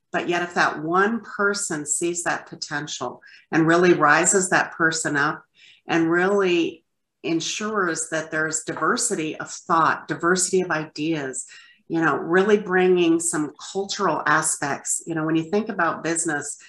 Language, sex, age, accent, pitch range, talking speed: English, female, 50-69, American, 155-185 Hz, 145 wpm